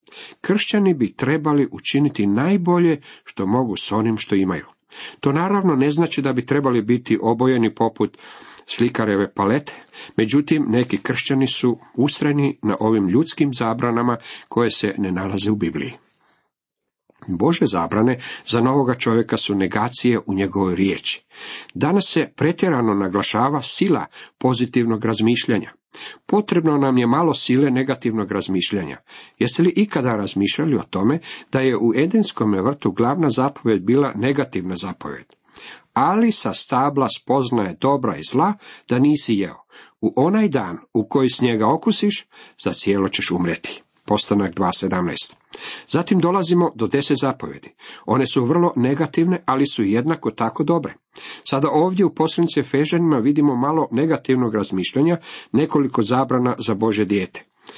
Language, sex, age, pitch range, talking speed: Croatian, male, 50-69, 110-150 Hz, 135 wpm